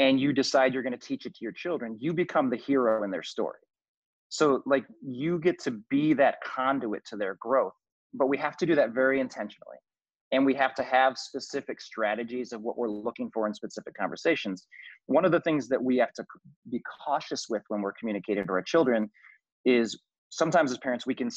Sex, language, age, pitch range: male, English, 30-49, 115-140 Hz